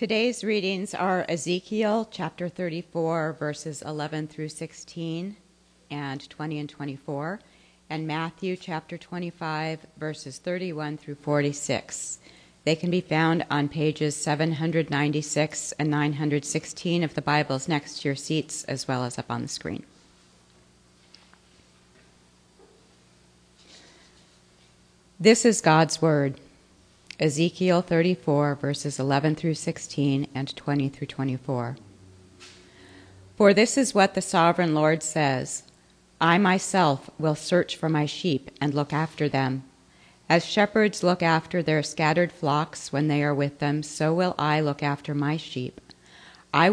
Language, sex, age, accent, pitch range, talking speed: English, female, 40-59, American, 140-165 Hz, 125 wpm